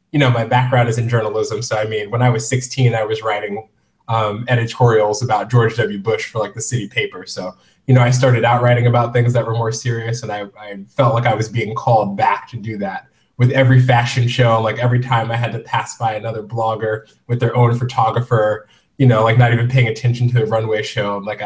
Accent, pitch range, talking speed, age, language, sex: American, 115-140 Hz, 235 wpm, 20-39, English, male